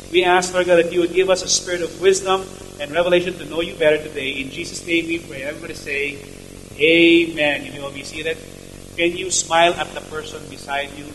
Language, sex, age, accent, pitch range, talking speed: English, male, 30-49, Filipino, 150-205 Hz, 225 wpm